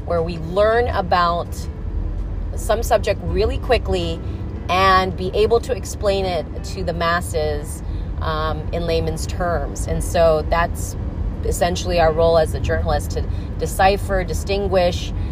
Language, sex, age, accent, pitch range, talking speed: English, female, 30-49, American, 80-95 Hz, 130 wpm